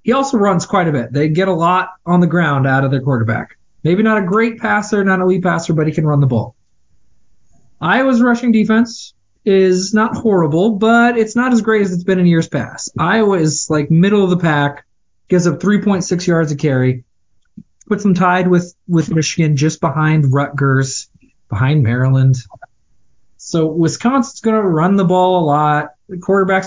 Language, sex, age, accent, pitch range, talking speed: English, male, 20-39, American, 135-185 Hz, 185 wpm